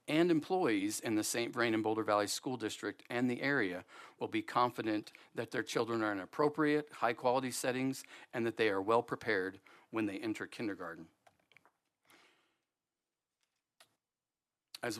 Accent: American